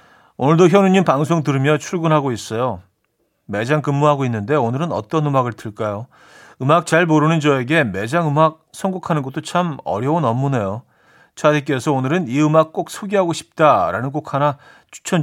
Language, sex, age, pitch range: Korean, male, 40-59, 125-170 Hz